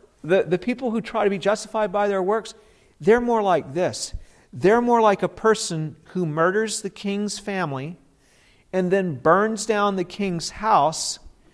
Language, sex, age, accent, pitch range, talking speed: English, male, 50-69, American, 185-235 Hz, 165 wpm